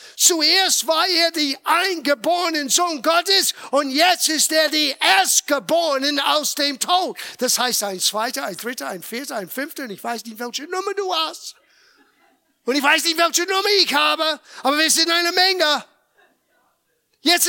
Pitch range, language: 245-335 Hz, German